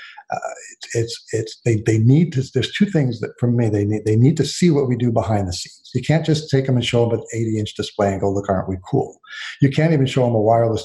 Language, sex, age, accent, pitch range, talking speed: English, male, 50-69, American, 110-130 Hz, 280 wpm